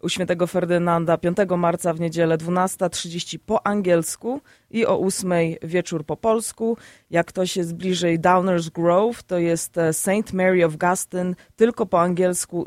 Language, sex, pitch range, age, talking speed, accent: Polish, female, 170-195 Hz, 20-39, 145 wpm, native